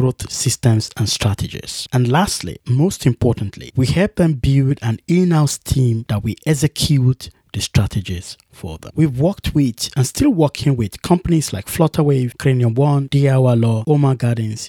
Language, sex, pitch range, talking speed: English, male, 110-145 Hz, 145 wpm